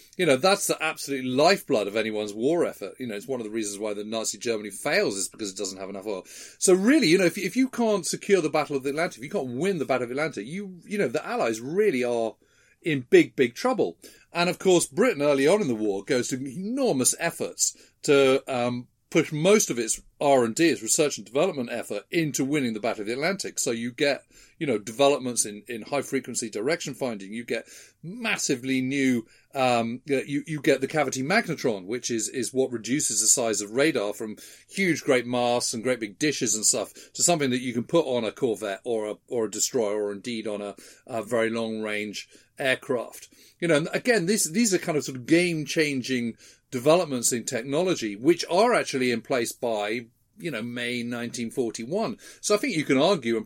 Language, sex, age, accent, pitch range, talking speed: English, male, 40-59, British, 115-155 Hz, 220 wpm